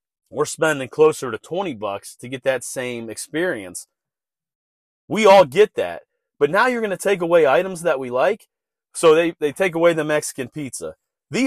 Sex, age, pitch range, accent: male, 30-49, 130-190 Hz, American